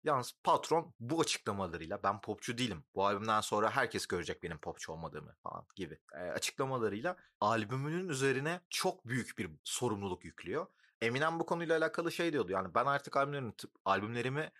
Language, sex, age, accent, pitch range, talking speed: Turkish, male, 30-49, native, 110-160 Hz, 145 wpm